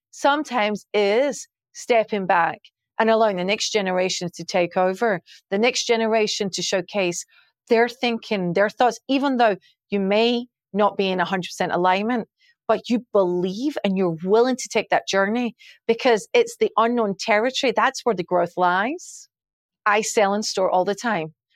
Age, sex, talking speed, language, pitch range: 40-59, female, 160 wpm, English, 185-235 Hz